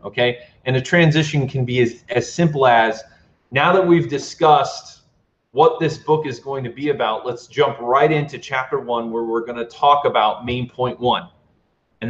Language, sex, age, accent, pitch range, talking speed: English, male, 30-49, American, 120-145 Hz, 190 wpm